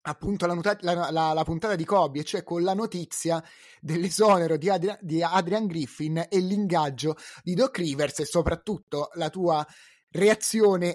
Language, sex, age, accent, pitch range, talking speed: Italian, male, 30-49, native, 150-185 Hz, 140 wpm